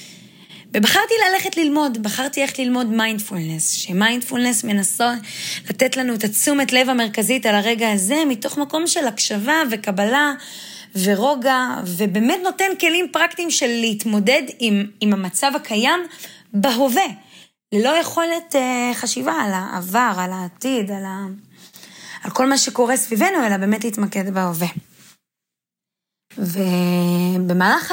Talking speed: 120 wpm